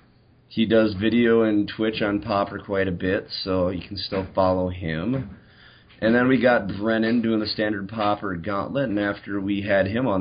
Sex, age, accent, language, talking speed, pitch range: male, 30-49, American, English, 190 wpm, 95-115 Hz